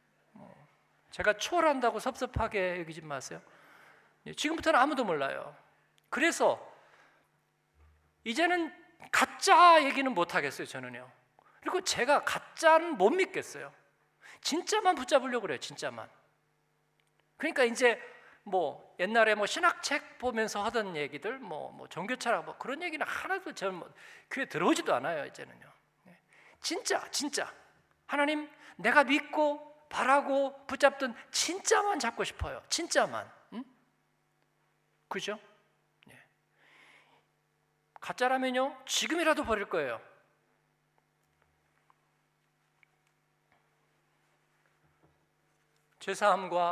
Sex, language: male, Korean